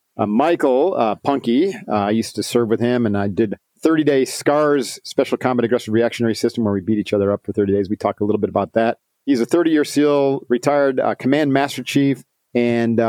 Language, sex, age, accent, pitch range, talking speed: English, male, 40-59, American, 105-140 Hz, 215 wpm